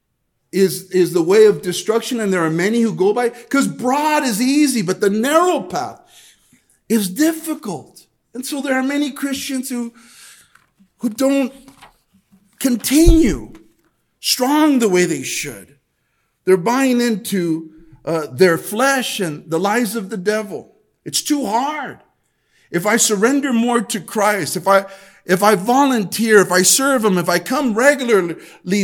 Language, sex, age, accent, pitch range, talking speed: English, male, 50-69, American, 185-265 Hz, 150 wpm